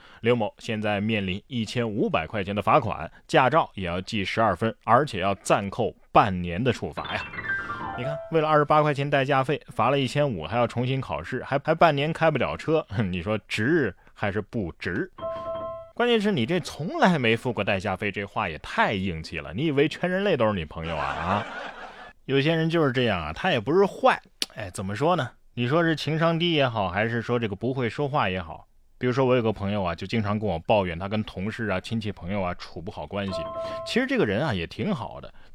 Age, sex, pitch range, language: 20-39, male, 100-150 Hz, Chinese